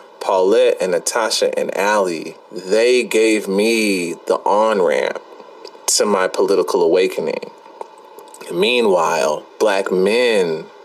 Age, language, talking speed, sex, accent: 30-49, English, 95 wpm, male, American